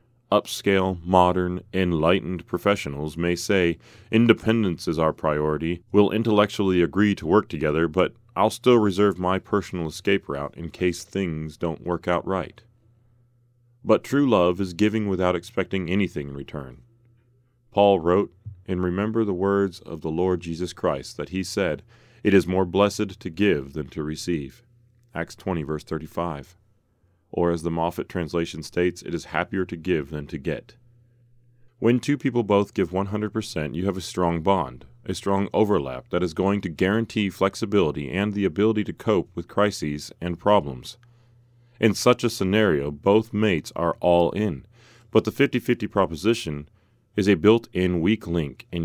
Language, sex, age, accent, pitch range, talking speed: English, male, 30-49, American, 85-110 Hz, 160 wpm